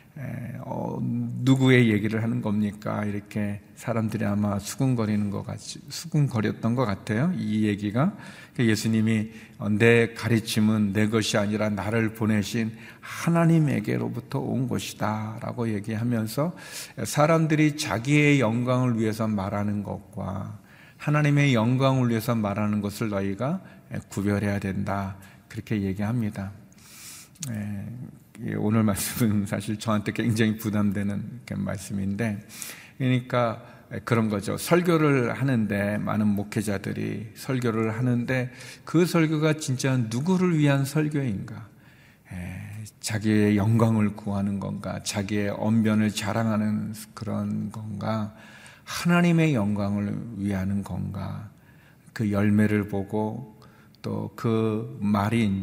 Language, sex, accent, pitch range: Korean, male, native, 105-125 Hz